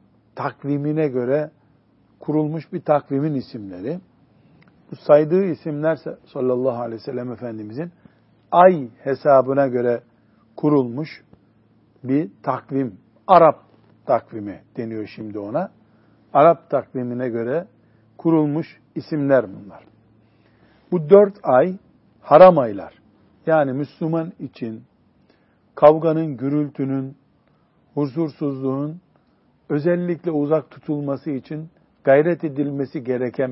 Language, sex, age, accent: Turkish, male, 60-79, native